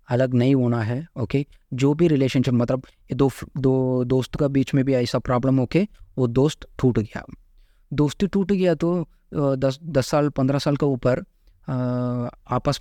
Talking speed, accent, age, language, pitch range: 175 wpm, native, 20-39, Hindi, 120-145 Hz